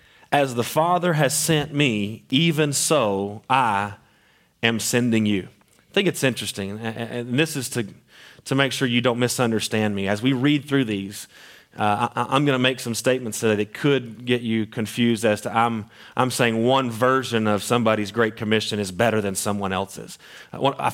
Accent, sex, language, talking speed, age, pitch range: American, male, English, 185 wpm, 30-49, 105-135 Hz